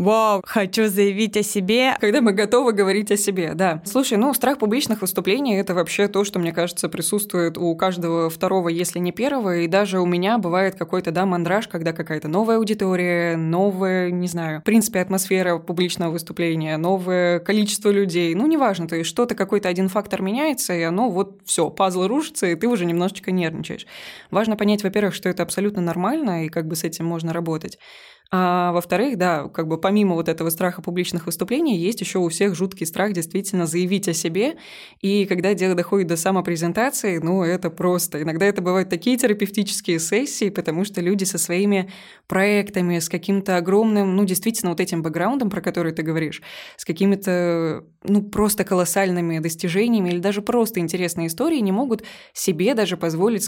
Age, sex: 20-39, female